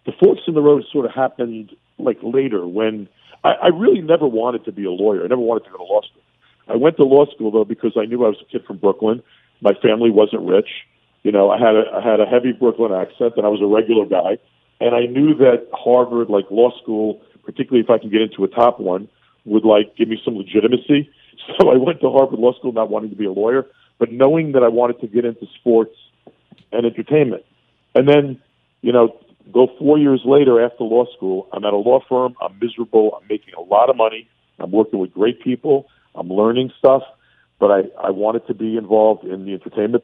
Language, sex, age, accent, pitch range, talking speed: English, male, 50-69, American, 110-125 Hz, 225 wpm